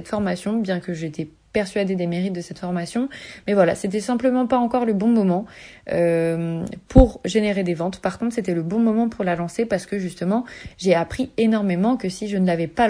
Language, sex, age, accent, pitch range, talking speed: French, female, 30-49, French, 185-225 Hz, 215 wpm